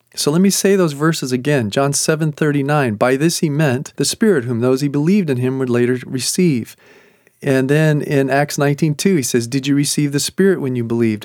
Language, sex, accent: English, male, American